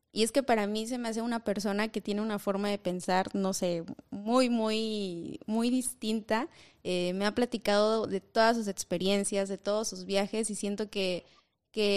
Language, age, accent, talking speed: Spanish, 20-39, Mexican, 190 wpm